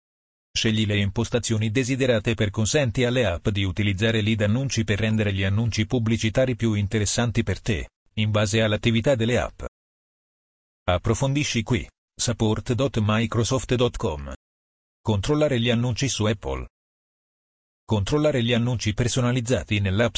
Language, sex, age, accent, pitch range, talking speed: Italian, male, 40-59, native, 105-120 Hz, 115 wpm